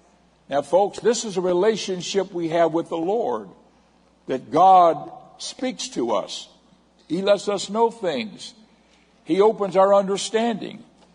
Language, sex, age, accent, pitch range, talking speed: English, male, 60-79, American, 145-200 Hz, 135 wpm